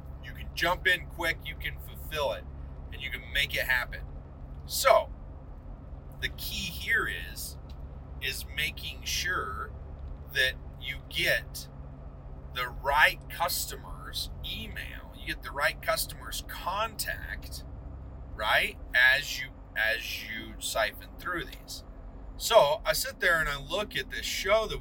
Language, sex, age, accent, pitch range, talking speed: English, male, 40-59, American, 70-80 Hz, 135 wpm